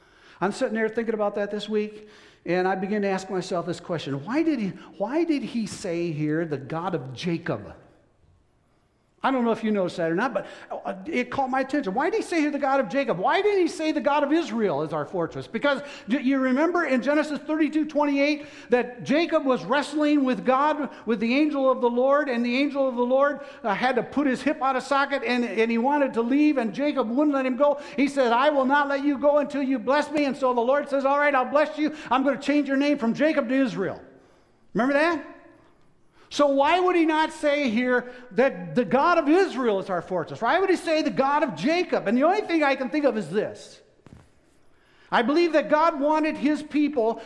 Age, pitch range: 60-79, 230-295 Hz